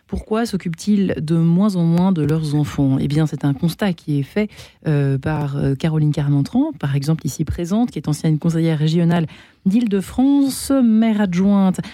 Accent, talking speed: French, 165 wpm